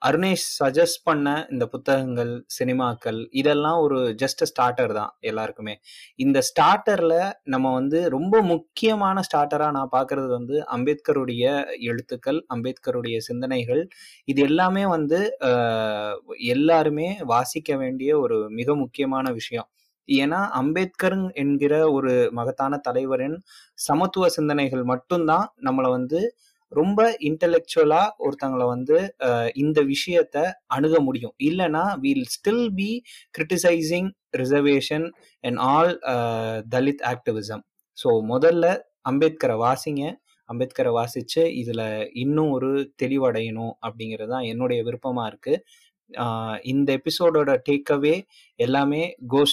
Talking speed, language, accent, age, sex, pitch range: 105 wpm, Tamil, native, 20-39, male, 125-170 Hz